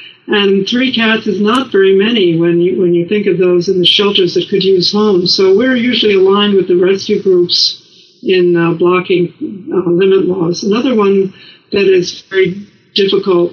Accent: American